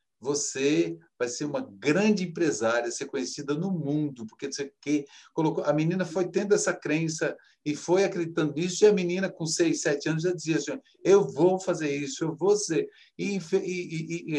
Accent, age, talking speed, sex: Brazilian, 50-69, 185 wpm, male